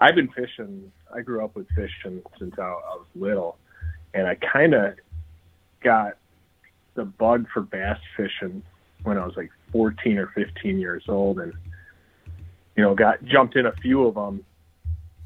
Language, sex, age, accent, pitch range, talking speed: English, male, 30-49, American, 85-105 Hz, 160 wpm